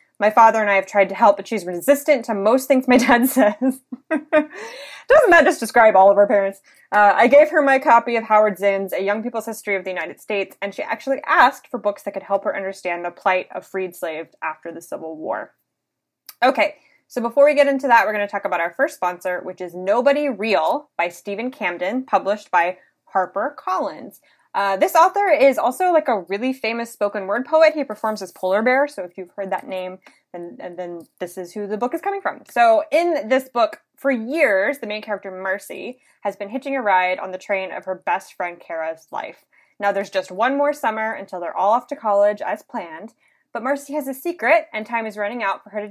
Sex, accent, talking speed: female, American, 225 wpm